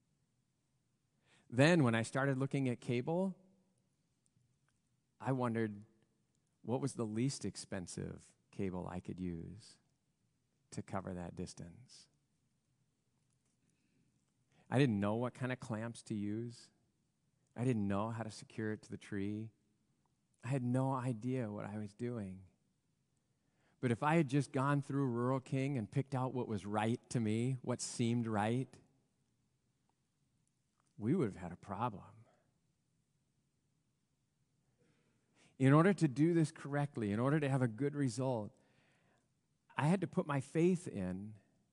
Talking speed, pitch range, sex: 135 wpm, 110-140 Hz, male